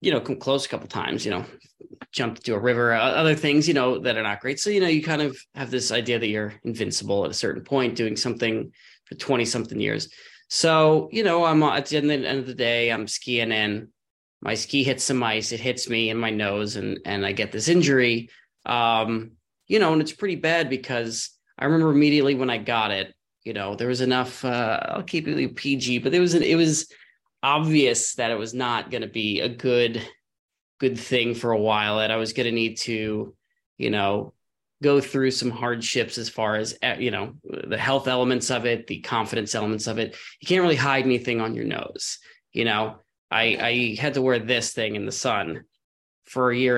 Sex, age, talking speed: male, 20-39, 220 wpm